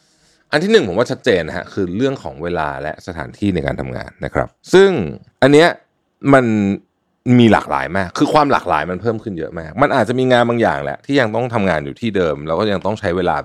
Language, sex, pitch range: Thai, male, 95-135 Hz